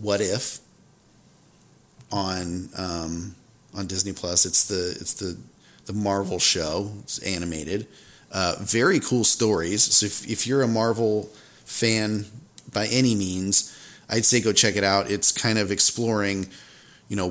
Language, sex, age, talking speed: English, male, 30-49, 145 wpm